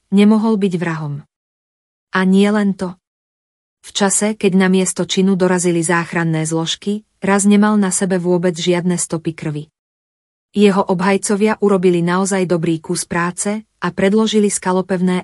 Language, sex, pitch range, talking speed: Slovak, female, 170-195 Hz, 135 wpm